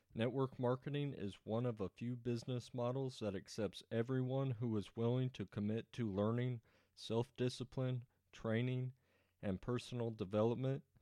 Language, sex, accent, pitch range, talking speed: English, male, American, 100-120 Hz, 130 wpm